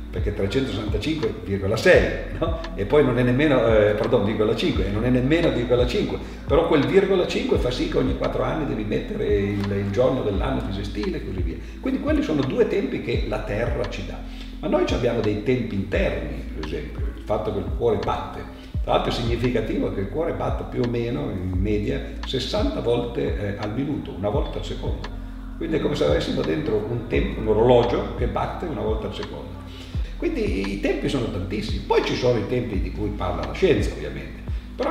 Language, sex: Italian, male